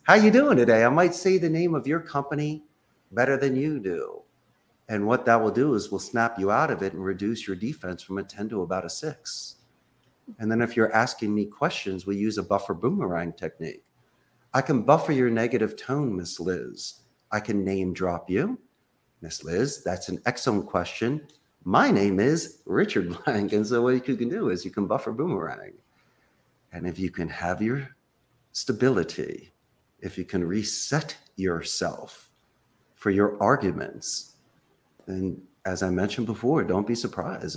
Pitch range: 95-140 Hz